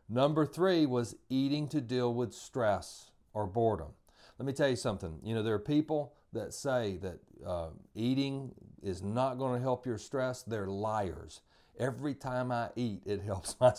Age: 40-59